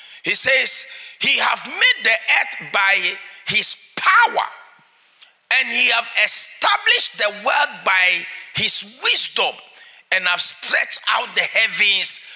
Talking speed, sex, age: 120 wpm, male, 50-69